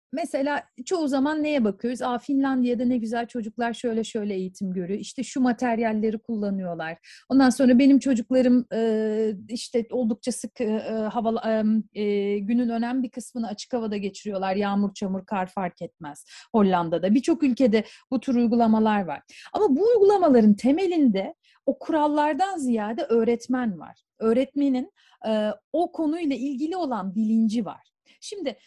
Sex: female